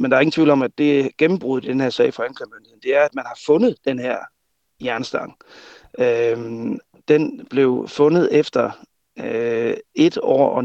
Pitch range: 125-150 Hz